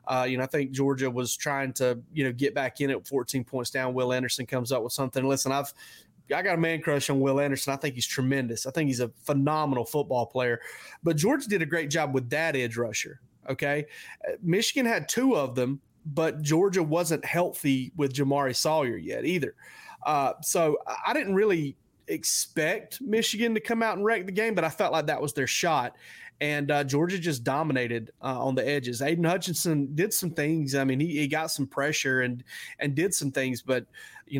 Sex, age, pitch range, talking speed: male, 30-49, 130-155 Hz, 210 wpm